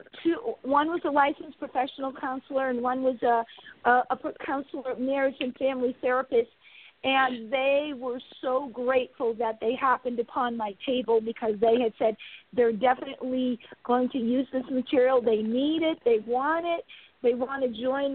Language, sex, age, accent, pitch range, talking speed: English, female, 50-69, American, 245-290 Hz, 160 wpm